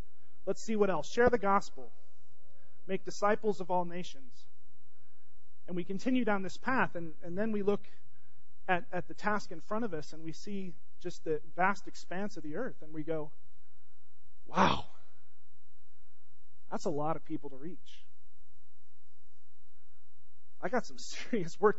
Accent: American